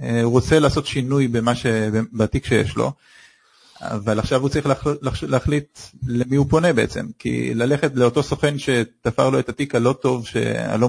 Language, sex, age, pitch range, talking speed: Hebrew, male, 40-59, 115-145 Hz, 165 wpm